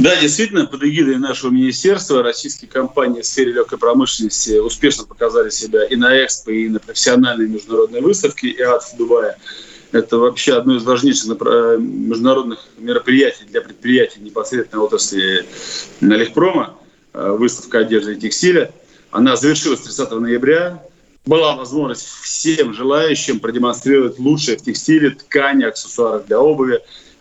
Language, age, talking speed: Russian, 30-49, 125 wpm